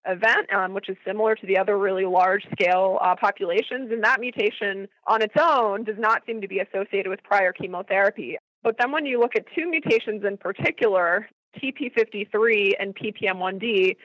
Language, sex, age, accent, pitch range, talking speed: English, female, 20-39, American, 190-225 Hz, 170 wpm